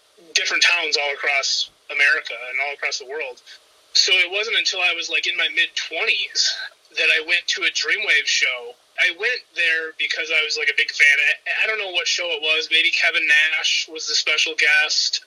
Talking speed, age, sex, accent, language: 205 wpm, 30-49, male, American, English